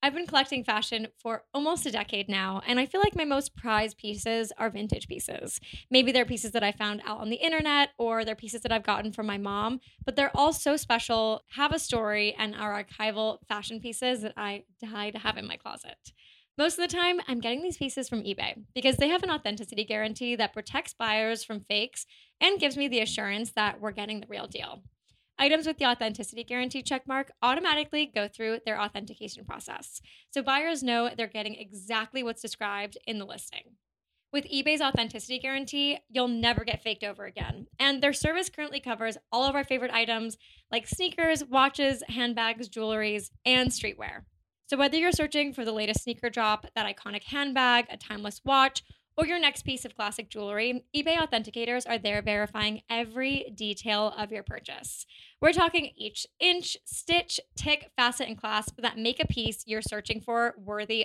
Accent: American